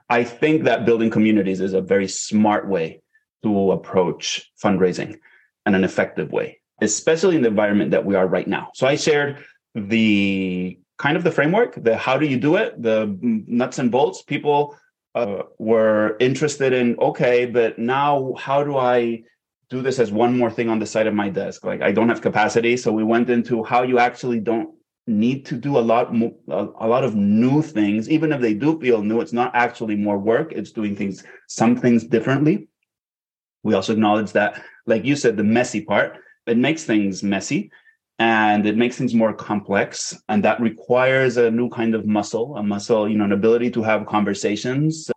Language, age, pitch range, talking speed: English, 30-49, 105-135 Hz, 195 wpm